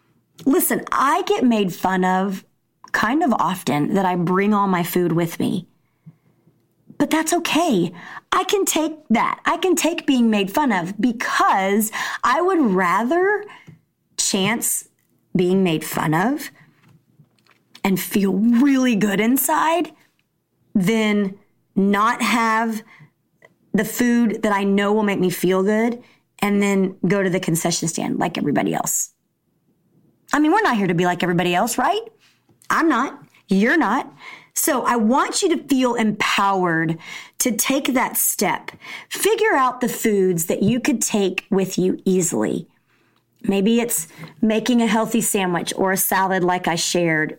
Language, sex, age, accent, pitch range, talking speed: English, female, 30-49, American, 185-245 Hz, 150 wpm